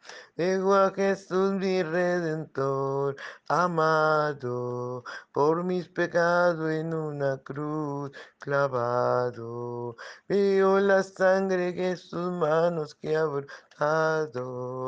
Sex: male